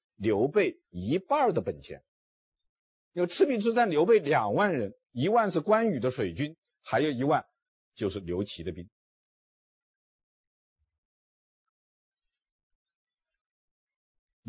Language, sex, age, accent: Chinese, male, 50-69, native